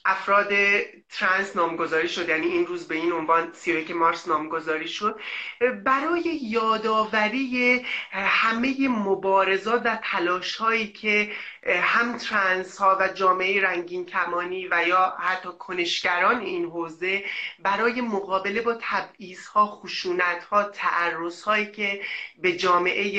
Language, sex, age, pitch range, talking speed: English, male, 30-49, 180-230 Hz, 120 wpm